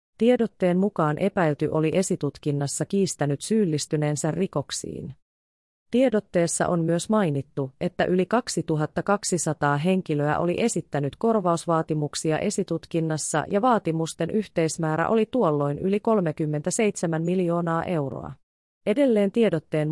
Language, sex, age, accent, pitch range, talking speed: Finnish, female, 30-49, native, 155-200 Hz, 95 wpm